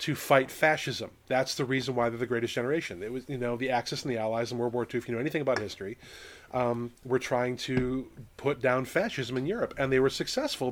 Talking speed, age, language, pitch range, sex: 240 wpm, 30-49, English, 120-145 Hz, male